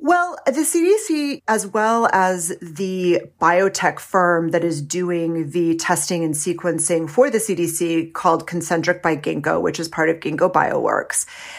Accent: American